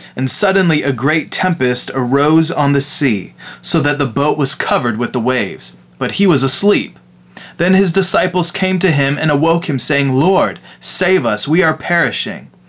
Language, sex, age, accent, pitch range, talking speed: English, male, 20-39, American, 130-170 Hz, 180 wpm